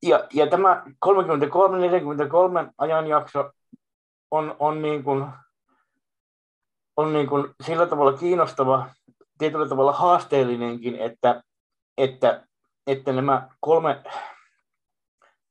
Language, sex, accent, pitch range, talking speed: Finnish, male, native, 120-145 Hz, 85 wpm